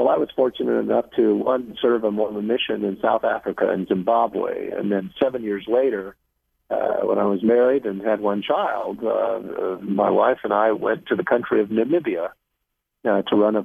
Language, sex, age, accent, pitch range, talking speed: English, male, 50-69, American, 100-120 Hz, 200 wpm